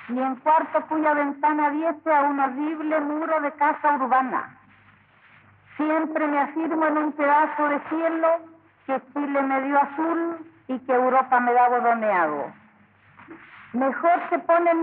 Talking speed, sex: 140 wpm, female